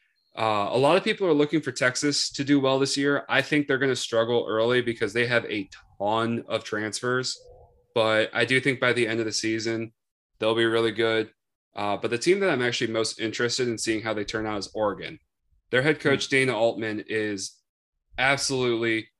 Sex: male